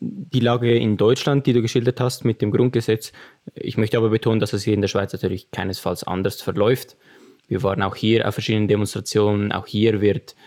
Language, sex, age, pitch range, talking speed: German, male, 20-39, 100-120 Hz, 200 wpm